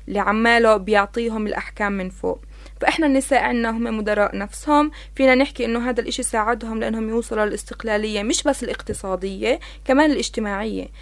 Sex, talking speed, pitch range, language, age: female, 130 wpm, 215-260 Hz, Arabic, 20-39